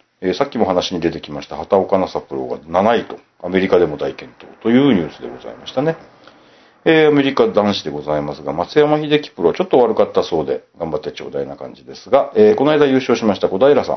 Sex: male